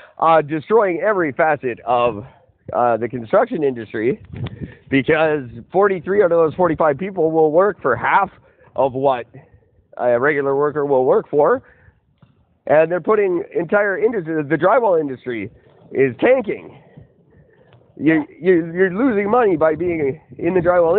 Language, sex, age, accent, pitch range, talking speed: English, male, 50-69, American, 125-175 Hz, 135 wpm